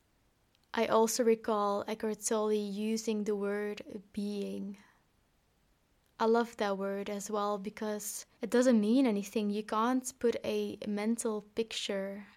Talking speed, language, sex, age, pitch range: 125 wpm, English, female, 20-39, 205-230 Hz